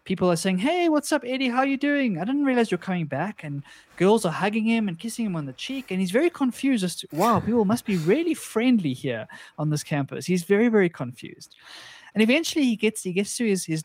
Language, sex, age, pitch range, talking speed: English, male, 20-39, 135-190 Hz, 245 wpm